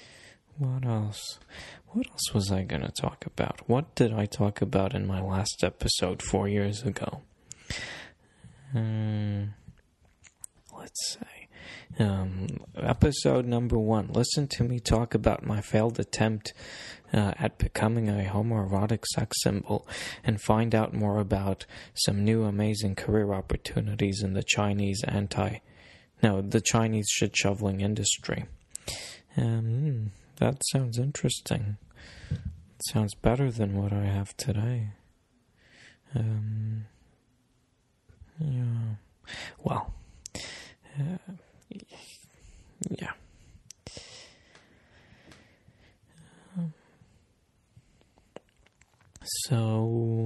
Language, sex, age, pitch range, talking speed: English, male, 20-39, 100-115 Hz, 100 wpm